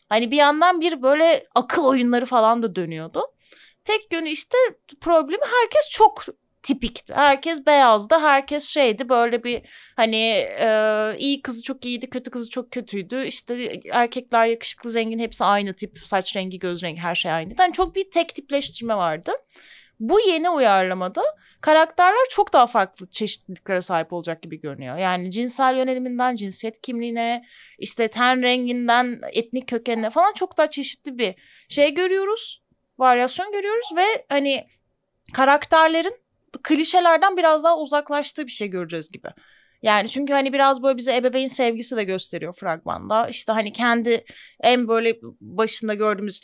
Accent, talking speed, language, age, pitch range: native, 145 wpm, Turkish, 30-49, 215-295 Hz